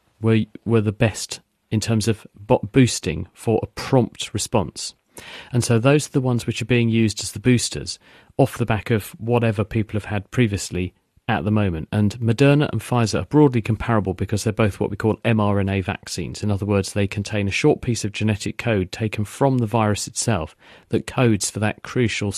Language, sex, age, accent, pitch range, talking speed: English, male, 40-59, British, 100-120 Hz, 200 wpm